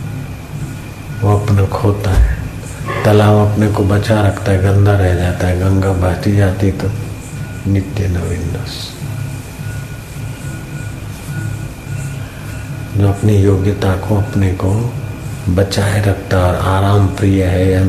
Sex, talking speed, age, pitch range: male, 105 wpm, 50-69, 95-120 Hz